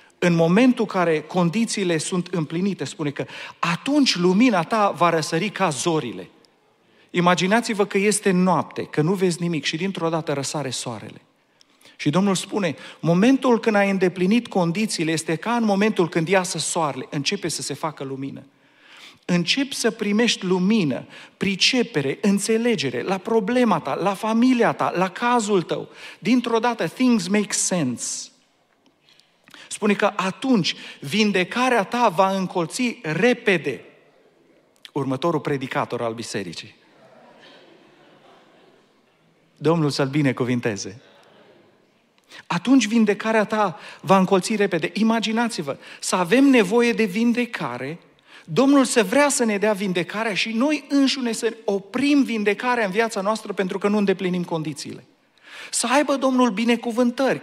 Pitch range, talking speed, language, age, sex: 165-230 Hz, 125 wpm, Romanian, 40-59, male